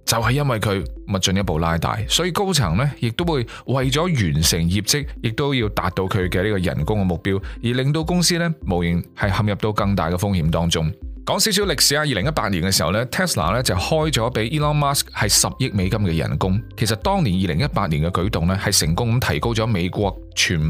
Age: 20-39